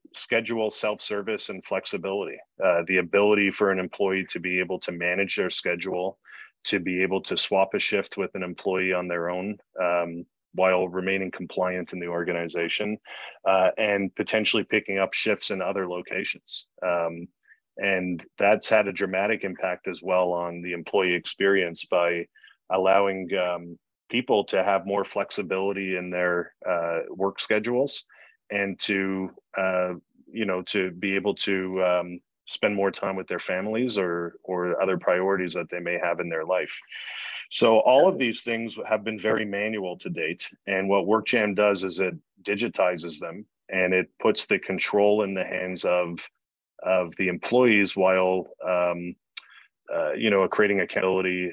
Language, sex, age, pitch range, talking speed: English, male, 30-49, 90-100 Hz, 160 wpm